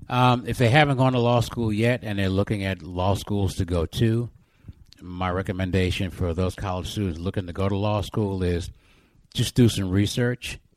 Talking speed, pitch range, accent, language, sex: 195 wpm, 90-105 Hz, American, English, male